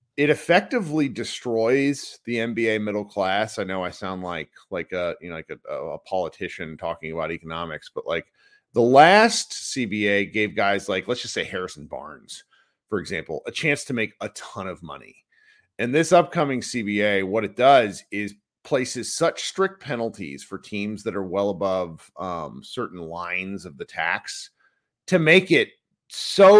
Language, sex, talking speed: English, male, 165 wpm